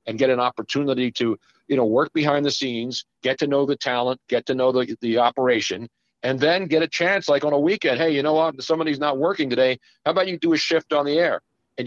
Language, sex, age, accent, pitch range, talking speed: English, male, 50-69, American, 130-165 Hz, 250 wpm